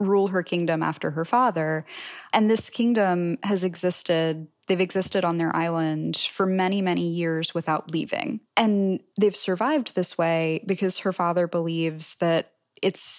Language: English